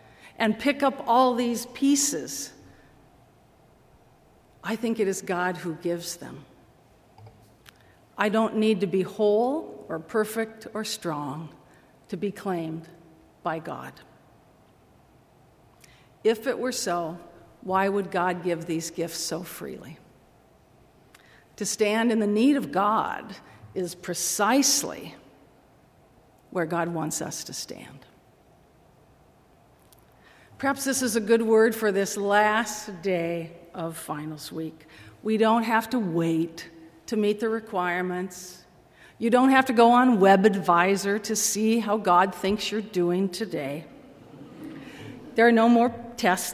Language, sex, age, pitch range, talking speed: English, female, 50-69, 170-225 Hz, 125 wpm